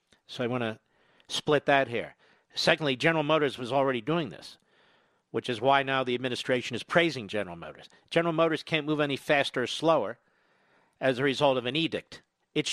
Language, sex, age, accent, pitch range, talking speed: English, male, 50-69, American, 145-190 Hz, 185 wpm